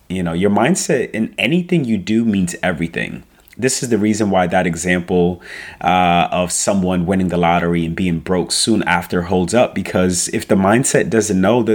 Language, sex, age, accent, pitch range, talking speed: English, male, 30-49, American, 90-110 Hz, 190 wpm